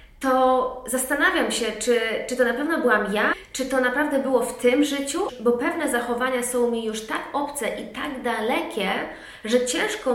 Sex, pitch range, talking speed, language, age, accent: female, 230-270 Hz, 175 wpm, Polish, 20-39, native